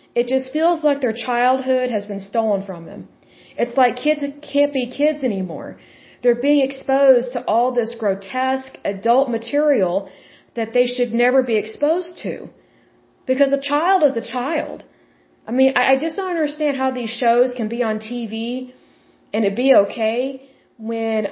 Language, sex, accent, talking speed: Bengali, female, American, 165 wpm